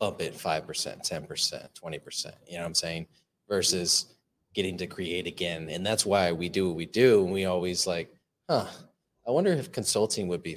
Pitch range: 90-110 Hz